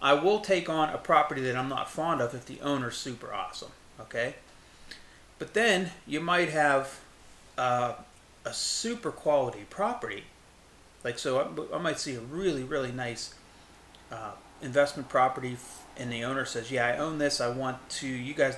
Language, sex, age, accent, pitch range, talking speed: English, male, 30-49, American, 125-150 Hz, 175 wpm